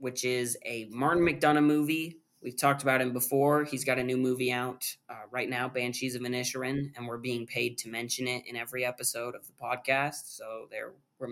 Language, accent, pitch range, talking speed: English, American, 125-155 Hz, 205 wpm